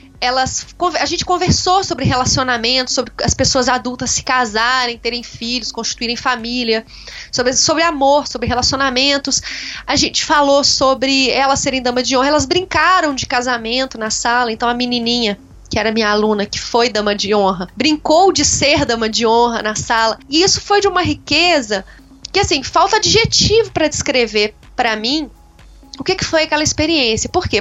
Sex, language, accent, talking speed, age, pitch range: female, Portuguese, Brazilian, 165 wpm, 20-39, 235-315 Hz